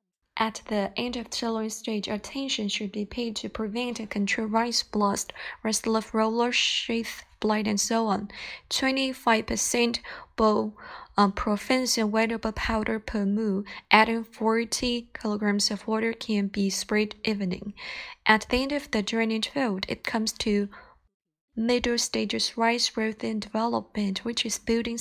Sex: female